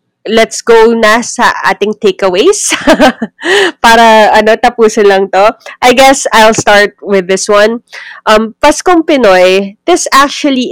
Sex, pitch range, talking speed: female, 185-230 Hz, 130 wpm